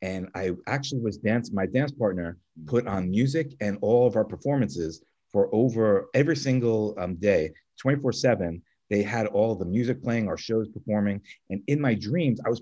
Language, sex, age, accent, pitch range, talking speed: English, male, 30-49, American, 100-135 Hz, 185 wpm